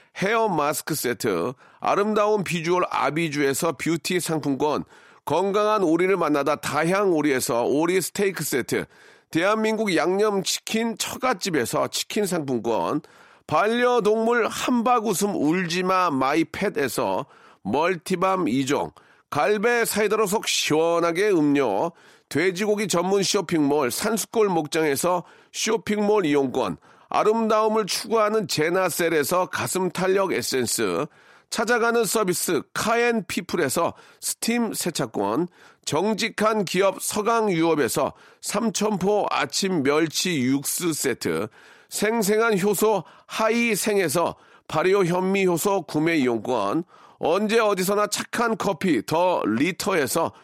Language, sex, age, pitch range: Korean, male, 40-59, 165-220 Hz